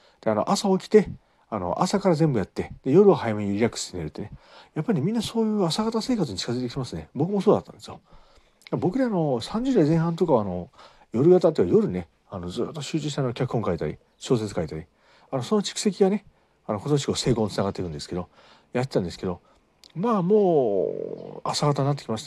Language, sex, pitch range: Japanese, male, 125-195 Hz